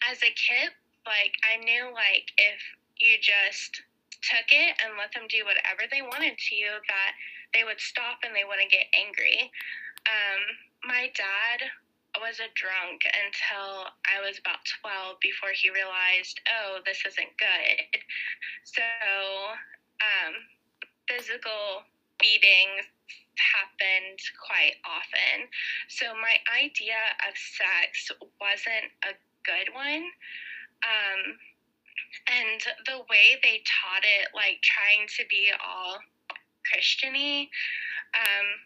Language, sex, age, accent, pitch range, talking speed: English, female, 10-29, American, 200-255 Hz, 120 wpm